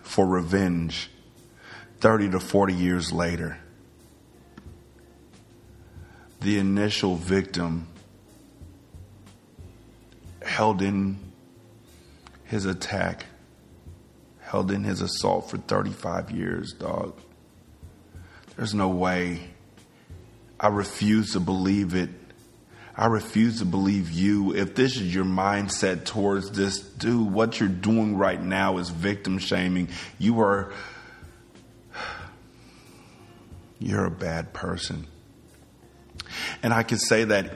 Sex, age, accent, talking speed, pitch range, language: male, 30-49, American, 100 wpm, 85-110 Hz, English